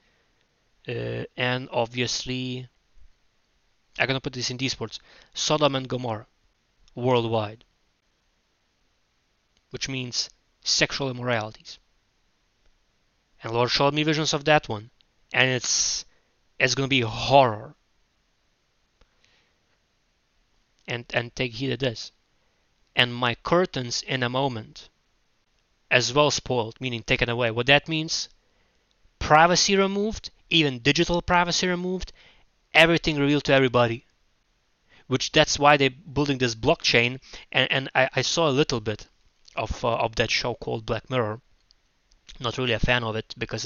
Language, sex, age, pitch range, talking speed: English, male, 20-39, 115-140 Hz, 130 wpm